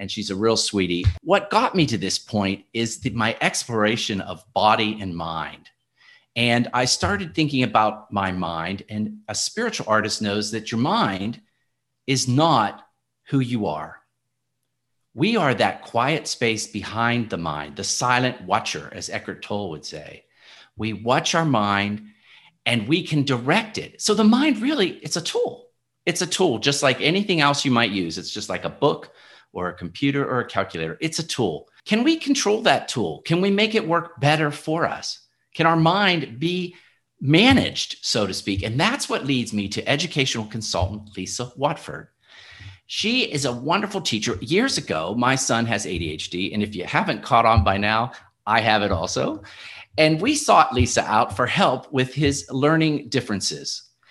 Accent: American